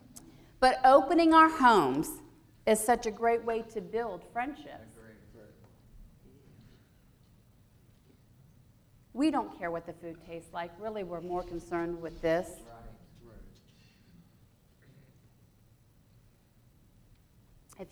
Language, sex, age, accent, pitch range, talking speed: English, female, 40-59, American, 150-230 Hz, 90 wpm